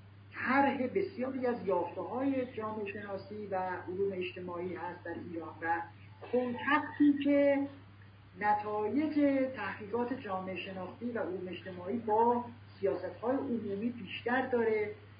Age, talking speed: 50-69, 105 wpm